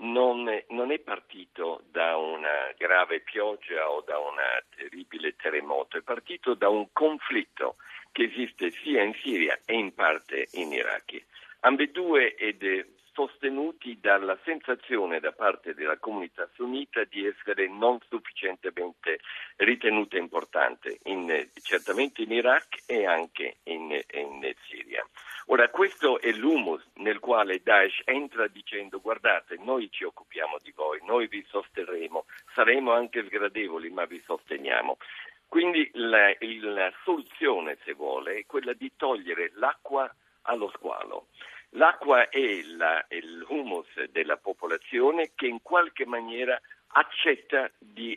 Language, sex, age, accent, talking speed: Italian, male, 60-79, native, 125 wpm